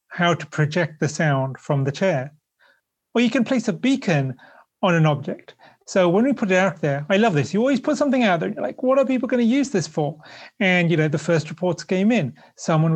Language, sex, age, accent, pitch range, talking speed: English, male, 30-49, British, 150-210 Hz, 245 wpm